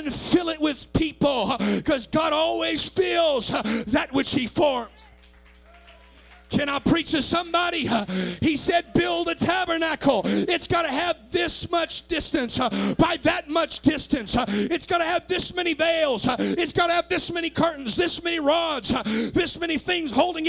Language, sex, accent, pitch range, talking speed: English, male, American, 275-340 Hz, 160 wpm